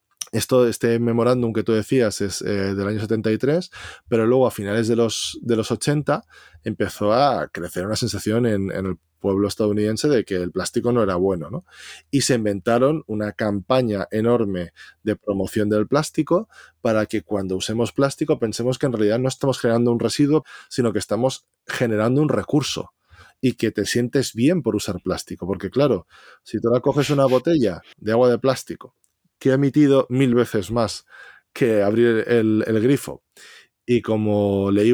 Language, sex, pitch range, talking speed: Spanish, male, 105-130 Hz, 175 wpm